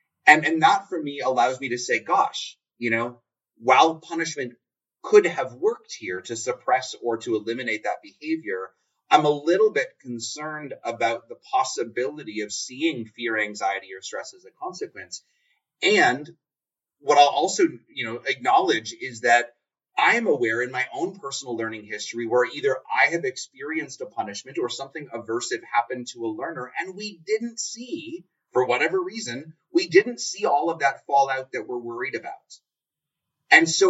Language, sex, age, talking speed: English, male, 30-49, 165 wpm